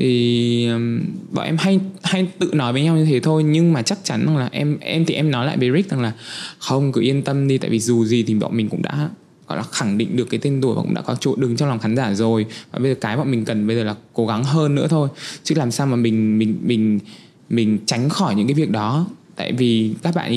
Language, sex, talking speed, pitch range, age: Vietnamese, male, 275 wpm, 115-145 Hz, 20-39